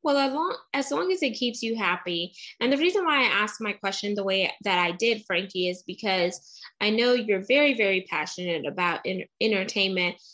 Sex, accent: female, American